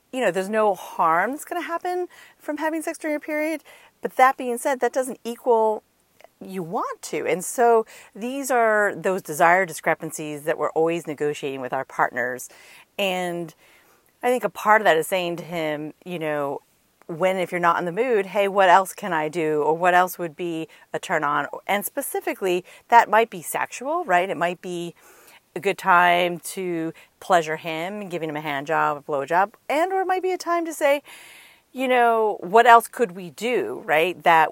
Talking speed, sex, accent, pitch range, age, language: 200 wpm, female, American, 155-225 Hz, 40-59, English